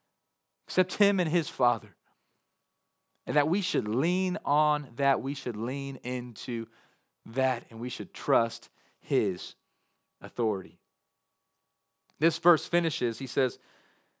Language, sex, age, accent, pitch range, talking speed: English, male, 30-49, American, 125-170 Hz, 120 wpm